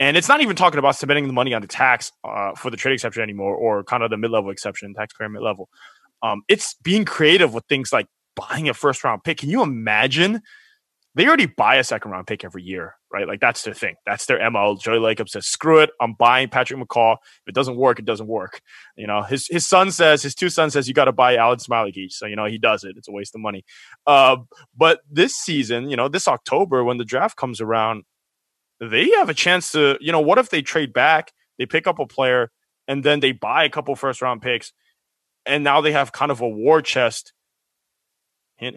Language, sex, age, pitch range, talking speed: English, male, 20-39, 115-150 Hz, 230 wpm